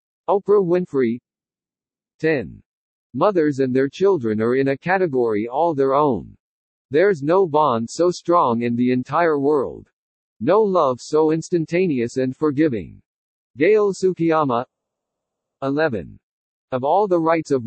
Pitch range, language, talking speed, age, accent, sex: 130-175 Hz, English, 125 wpm, 50-69, American, male